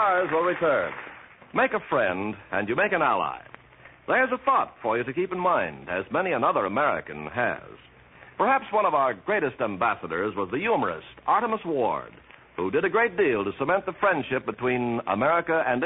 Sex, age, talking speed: male, 60-79, 180 wpm